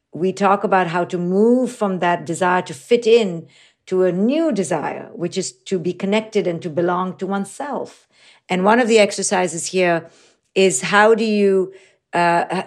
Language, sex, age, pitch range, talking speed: English, female, 50-69, 185-240 Hz, 175 wpm